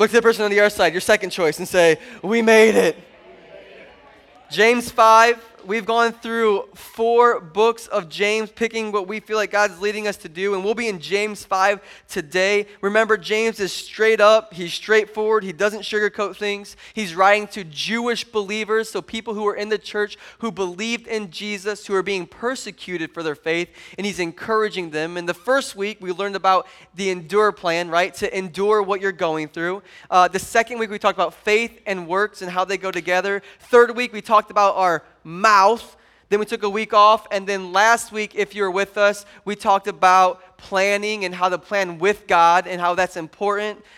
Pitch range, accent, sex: 185-220 Hz, American, male